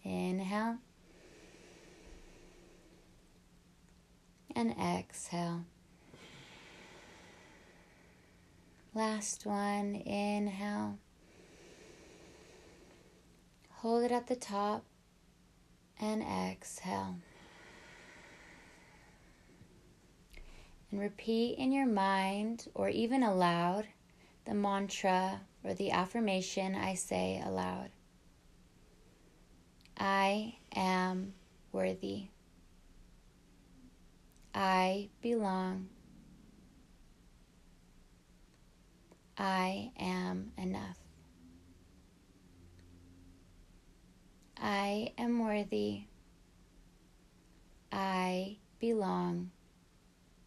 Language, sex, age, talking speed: English, female, 20-39, 50 wpm